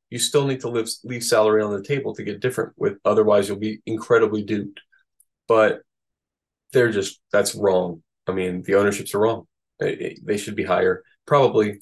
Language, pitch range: English, 100-125 Hz